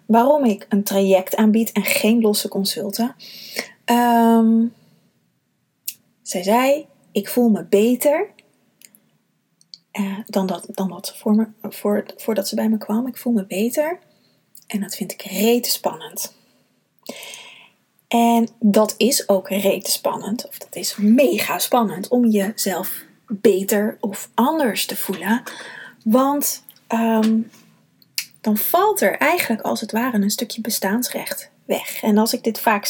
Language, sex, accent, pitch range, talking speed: Dutch, female, Dutch, 200-240 Hz, 135 wpm